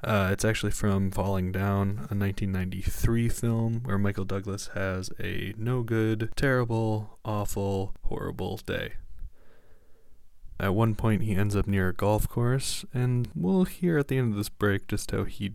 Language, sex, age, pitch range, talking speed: English, male, 20-39, 95-115 Hz, 160 wpm